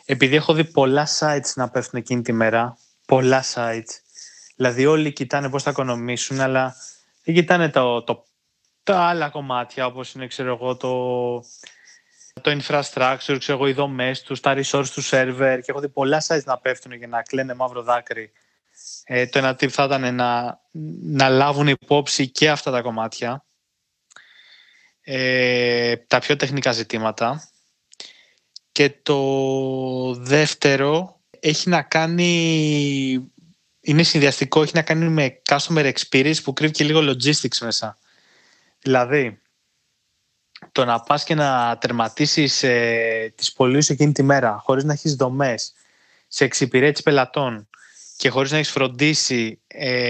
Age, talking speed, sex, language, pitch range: 20-39, 135 wpm, male, Greek, 125-150 Hz